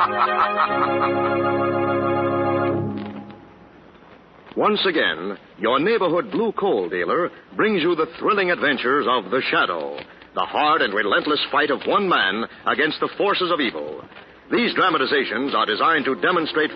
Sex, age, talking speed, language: male, 60-79, 120 wpm, English